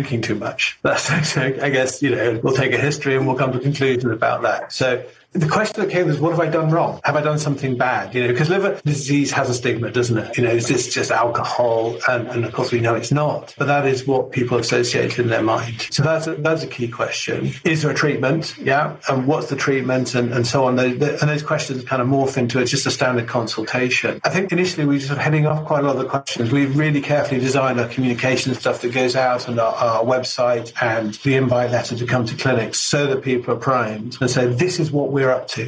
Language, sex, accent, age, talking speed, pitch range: English, male, British, 40-59, 260 wpm, 125-150 Hz